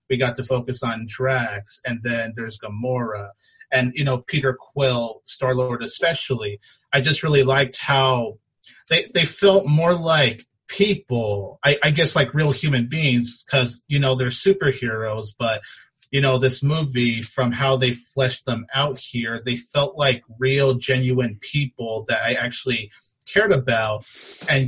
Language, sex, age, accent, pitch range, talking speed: English, male, 30-49, American, 120-145 Hz, 155 wpm